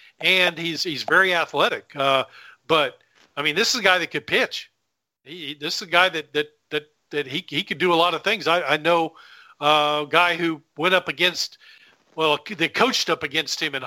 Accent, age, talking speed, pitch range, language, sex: American, 50-69, 220 wpm, 150-185 Hz, English, male